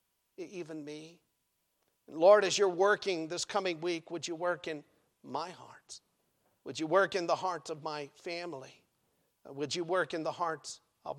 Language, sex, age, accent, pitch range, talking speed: English, male, 50-69, American, 175-250 Hz, 165 wpm